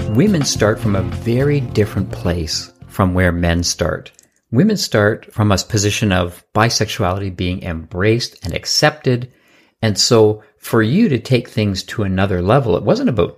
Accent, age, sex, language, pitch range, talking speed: American, 50-69, male, English, 100-130 Hz, 155 wpm